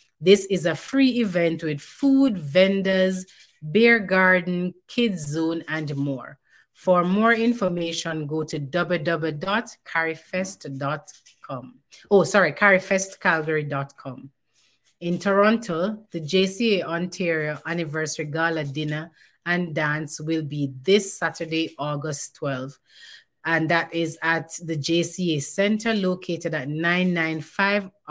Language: English